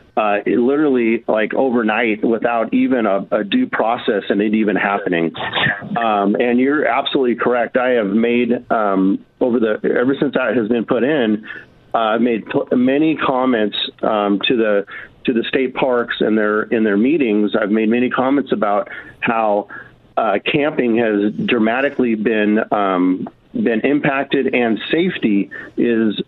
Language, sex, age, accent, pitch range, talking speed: English, male, 40-59, American, 110-135 Hz, 150 wpm